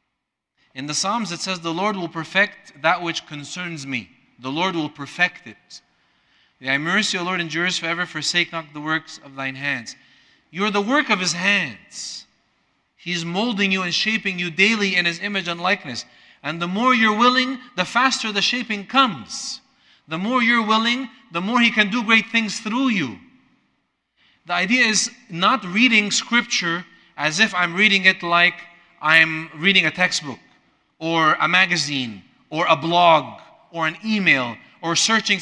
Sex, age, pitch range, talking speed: male, 40-59, 165-215 Hz, 175 wpm